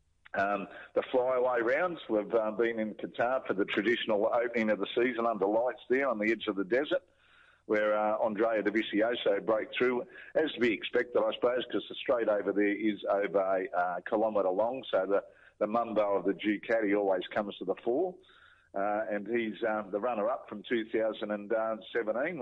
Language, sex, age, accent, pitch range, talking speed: English, male, 50-69, Australian, 105-125 Hz, 180 wpm